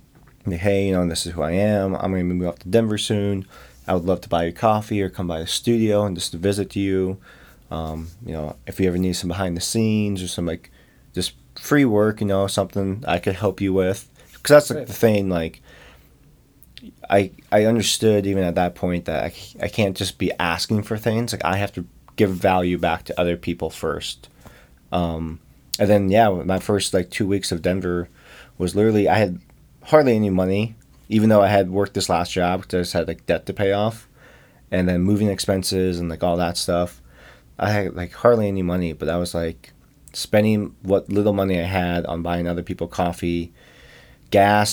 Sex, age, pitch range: male, 20-39, 90-105 Hz